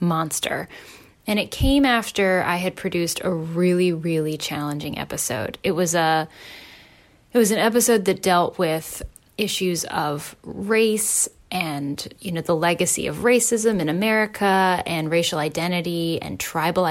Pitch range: 160-190 Hz